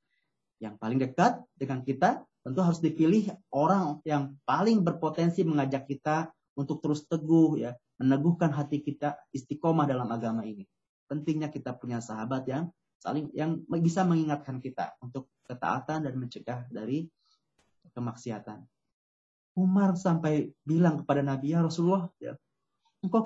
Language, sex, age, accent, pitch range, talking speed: Indonesian, male, 30-49, native, 130-165 Hz, 130 wpm